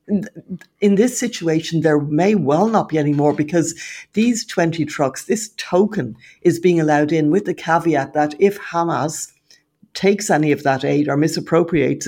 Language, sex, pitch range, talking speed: English, female, 150-185 Hz, 165 wpm